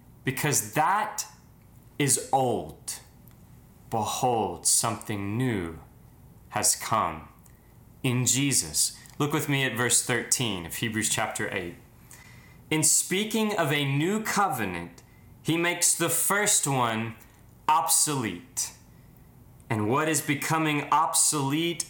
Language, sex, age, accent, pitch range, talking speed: English, male, 20-39, American, 110-145 Hz, 105 wpm